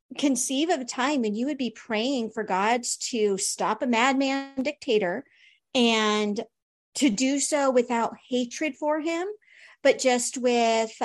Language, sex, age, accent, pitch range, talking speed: English, female, 40-59, American, 220-265 Hz, 145 wpm